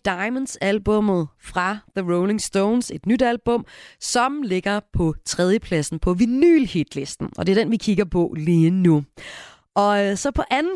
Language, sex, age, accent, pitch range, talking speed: Danish, female, 30-49, native, 170-235 Hz, 175 wpm